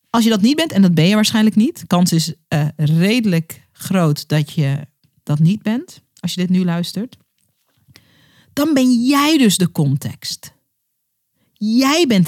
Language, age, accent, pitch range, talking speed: Dutch, 40-59, Dutch, 155-230 Hz, 165 wpm